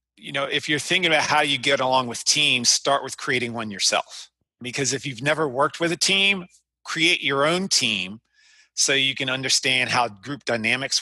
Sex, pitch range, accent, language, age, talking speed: male, 120-140 Hz, American, English, 30-49, 195 wpm